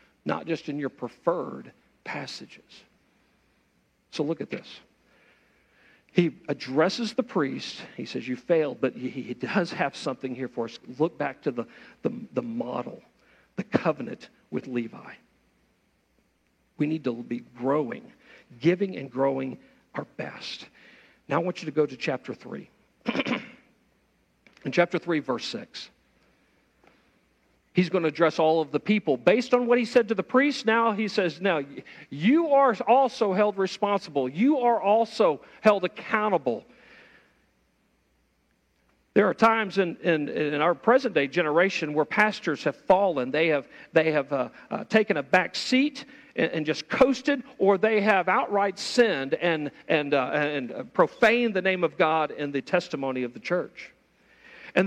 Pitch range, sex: 150-230 Hz, male